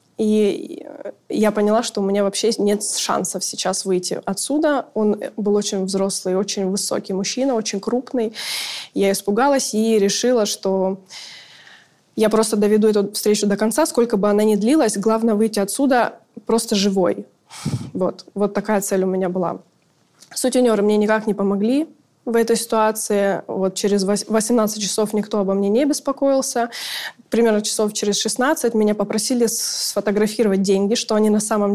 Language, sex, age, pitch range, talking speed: Russian, female, 20-39, 200-225 Hz, 150 wpm